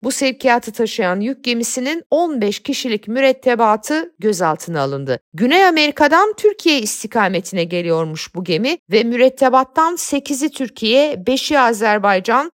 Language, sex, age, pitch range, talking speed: Turkish, female, 50-69, 200-290 Hz, 110 wpm